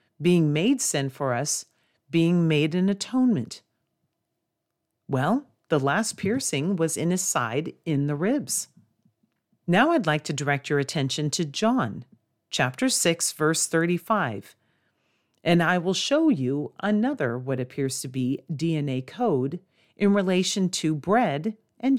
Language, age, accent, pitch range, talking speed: English, 40-59, American, 145-210 Hz, 135 wpm